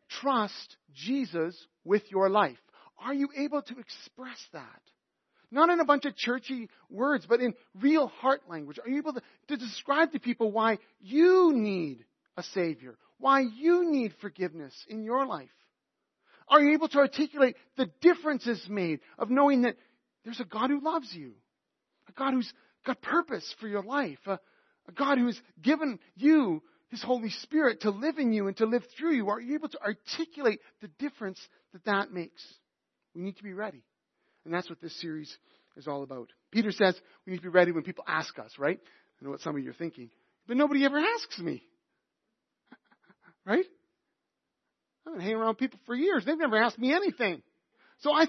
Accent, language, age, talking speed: American, English, 40-59, 185 wpm